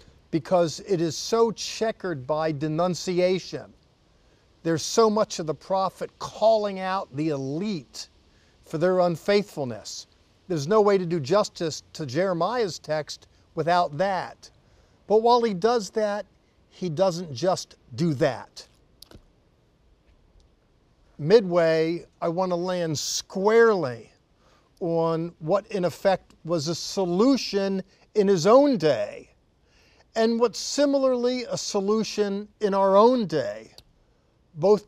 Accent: American